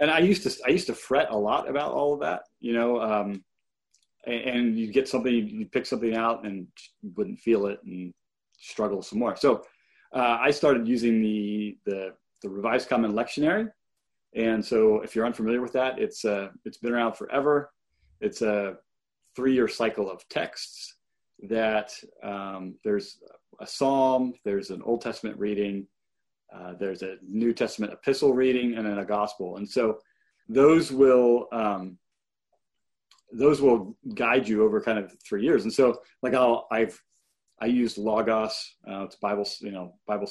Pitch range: 100-125 Hz